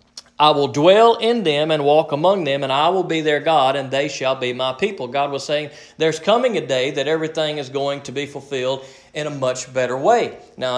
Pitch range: 135-175 Hz